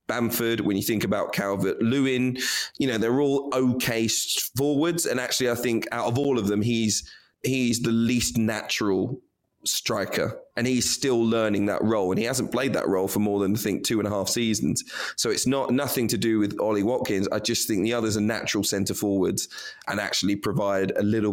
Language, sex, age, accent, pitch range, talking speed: English, male, 20-39, British, 105-125 Hz, 205 wpm